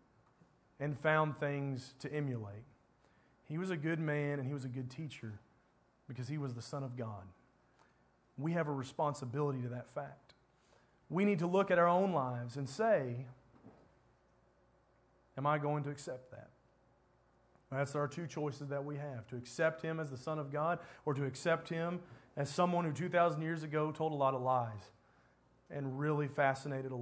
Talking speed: 180 wpm